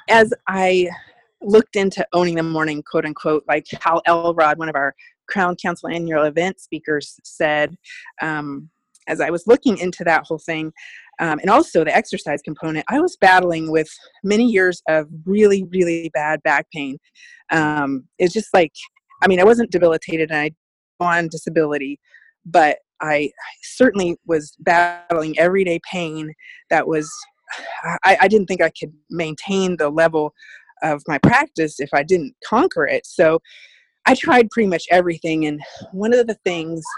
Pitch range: 155-195 Hz